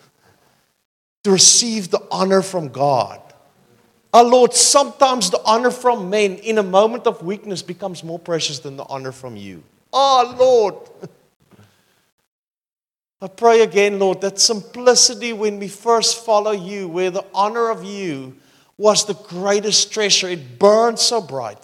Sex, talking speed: male, 145 wpm